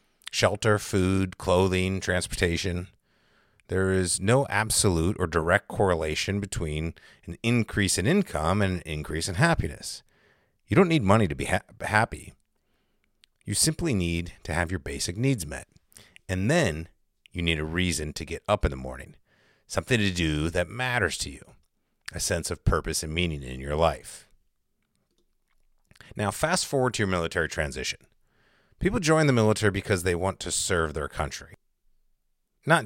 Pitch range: 80-105 Hz